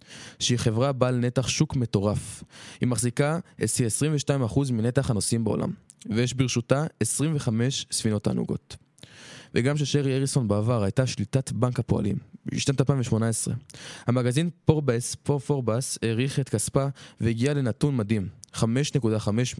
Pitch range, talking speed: 115-140 Hz, 115 wpm